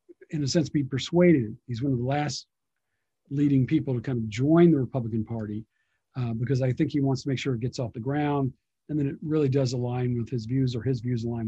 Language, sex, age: English, male, 50-69